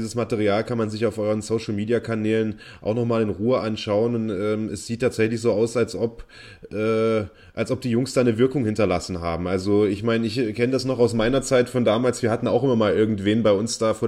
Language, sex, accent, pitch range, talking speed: German, male, German, 110-120 Hz, 230 wpm